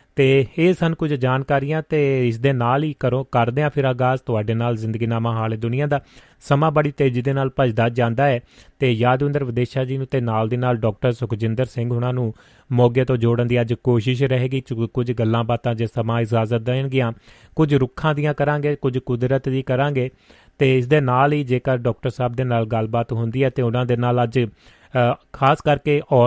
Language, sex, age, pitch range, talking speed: Punjabi, male, 30-49, 120-135 Hz, 155 wpm